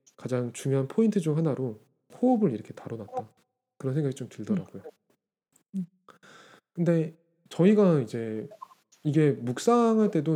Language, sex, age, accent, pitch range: Korean, male, 20-39, native, 140-215 Hz